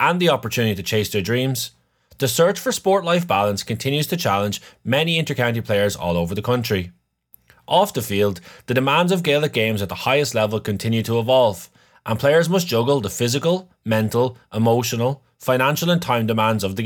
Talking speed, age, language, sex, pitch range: 185 wpm, 20-39, English, male, 100-145 Hz